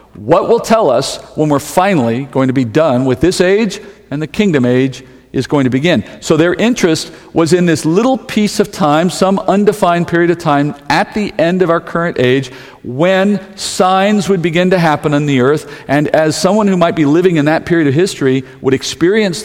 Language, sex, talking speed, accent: English, male, 205 wpm, American